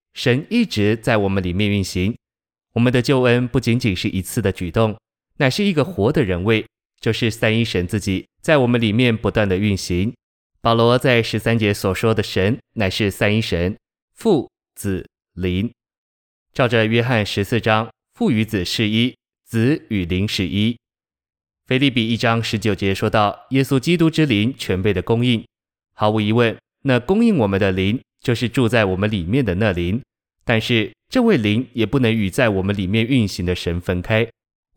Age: 20-39